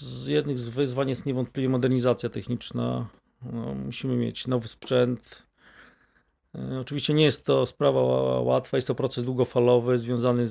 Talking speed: 135 wpm